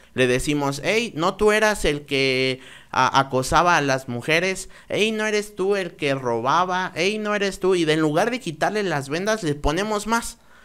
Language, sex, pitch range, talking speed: Spanish, male, 120-150 Hz, 185 wpm